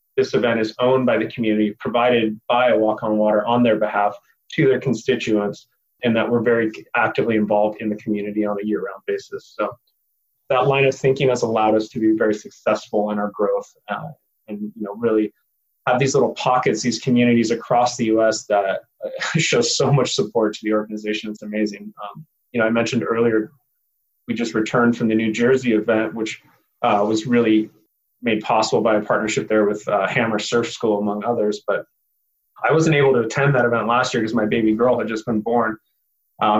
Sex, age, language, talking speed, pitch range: male, 30-49, English, 200 wpm, 110-120 Hz